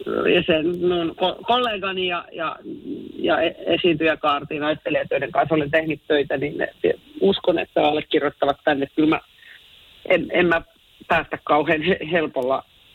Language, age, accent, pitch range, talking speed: Finnish, 40-59, native, 150-185 Hz, 120 wpm